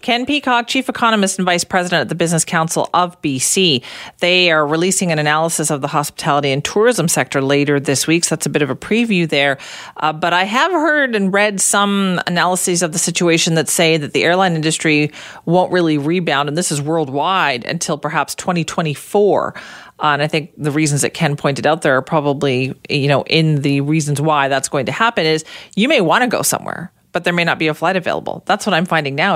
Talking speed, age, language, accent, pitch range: 215 wpm, 40-59, English, American, 145-185 Hz